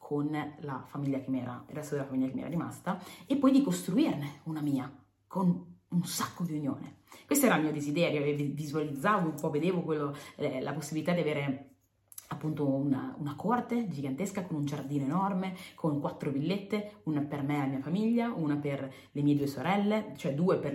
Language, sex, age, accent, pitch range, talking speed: Italian, female, 30-49, native, 140-170 Hz, 195 wpm